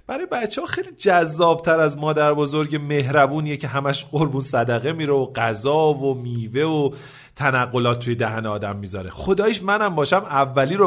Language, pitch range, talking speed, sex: Persian, 125-200 Hz, 160 wpm, male